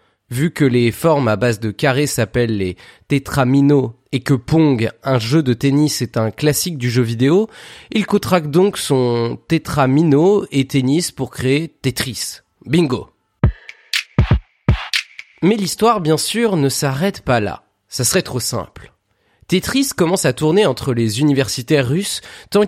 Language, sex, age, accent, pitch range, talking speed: French, male, 30-49, French, 125-175 Hz, 175 wpm